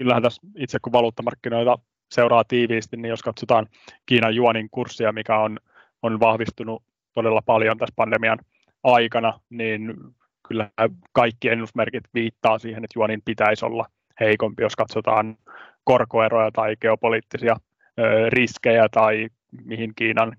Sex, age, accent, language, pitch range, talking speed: male, 20-39, native, Finnish, 110-120 Hz, 125 wpm